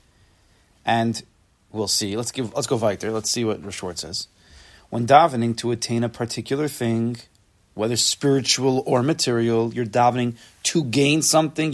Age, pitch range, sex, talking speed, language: 30-49, 110-150 Hz, male, 150 wpm, English